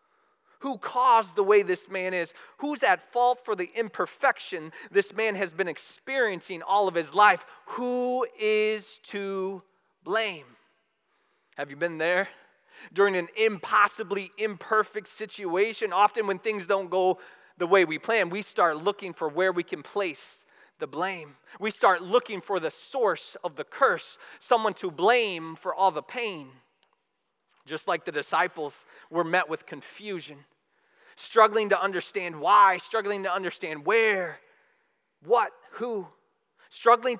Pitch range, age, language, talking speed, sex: 190-250 Hz, 30-49, English, 145 wpm, male